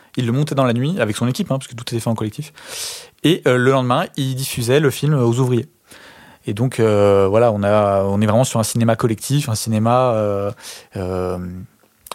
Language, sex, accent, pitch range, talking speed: French, male, French, 110-135 Hz, 215 wpm